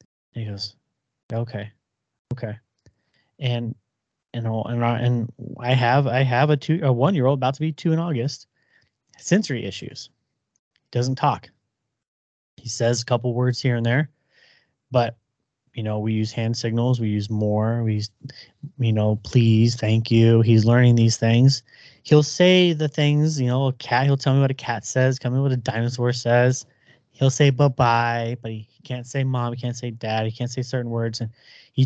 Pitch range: 115-135 Hz